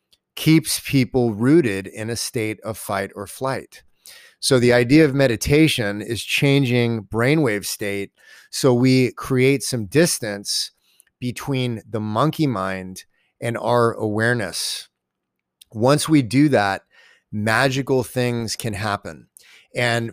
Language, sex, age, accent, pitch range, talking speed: English, male, 30-49, American, 110-140 Hz, 120 wpm